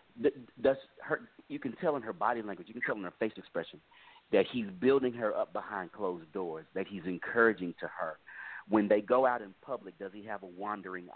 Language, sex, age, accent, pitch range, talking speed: English, male, 40-59, American, 95-130 Hz, 215 wpm